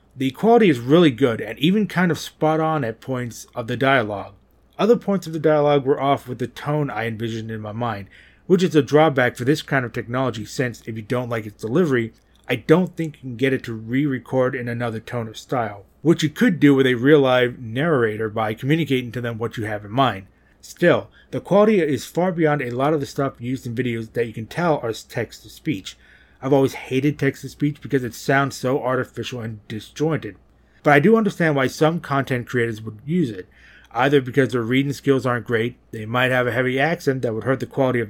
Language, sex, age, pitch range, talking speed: English, male, 30-49, 115-150 Hz, 220 wpm